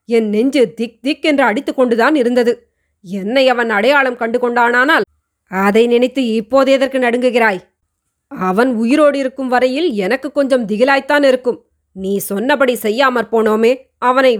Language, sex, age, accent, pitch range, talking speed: Tamil, female, 20-39, native, 225-260 Hz, 130 wpm